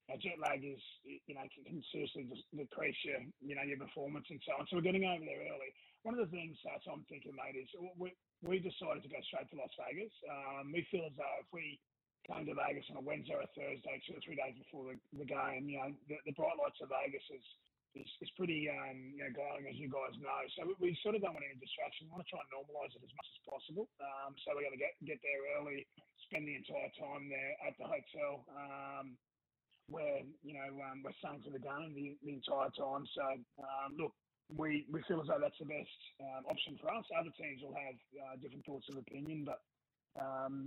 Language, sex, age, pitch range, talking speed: English, male, 30-49, 135-155 Hz, 240 wpm